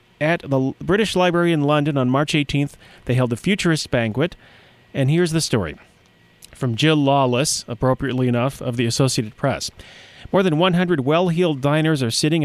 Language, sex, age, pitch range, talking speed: English, male, 40-59, 125-165 Hz, 165 wpm